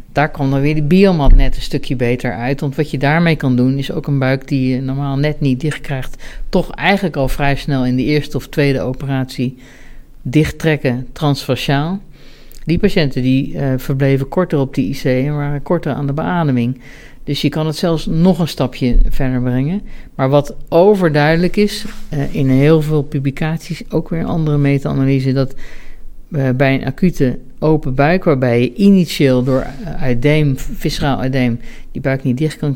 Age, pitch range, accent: 60-79, 135-155 Hz, Dutch